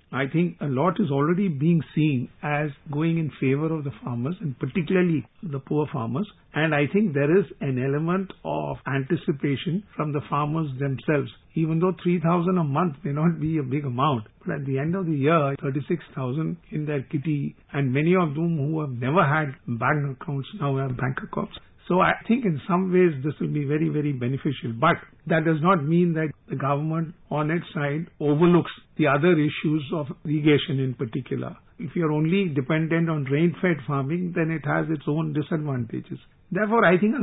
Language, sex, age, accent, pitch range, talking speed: English, male, 50-69, Indian, 140-170 Hz, 190 wpm